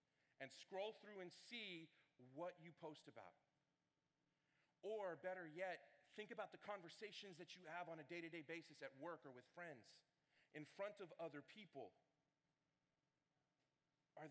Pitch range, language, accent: 145-175 Hz, English, American